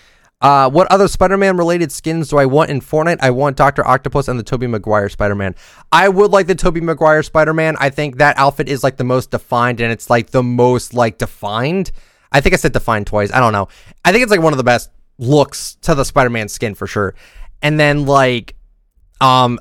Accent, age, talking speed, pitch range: American, 20-39, 215 wpm, 115-155 Hz